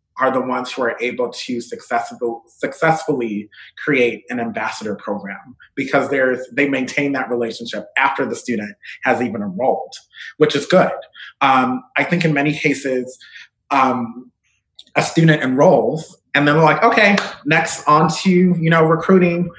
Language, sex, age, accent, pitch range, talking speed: English, male, 30-49, American, 125-160 Hz, 150 wpm